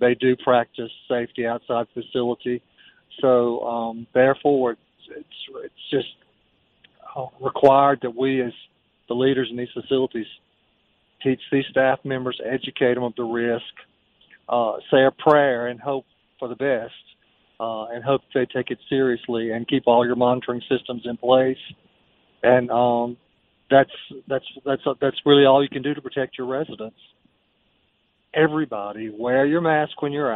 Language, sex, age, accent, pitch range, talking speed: English, male, 50-69, American, 120-135 Hz, 150 wpm